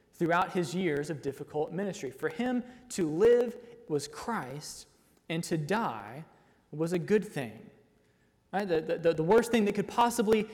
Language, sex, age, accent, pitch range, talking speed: English, male, 20-39, American, 155-215 Hz, 155 wpm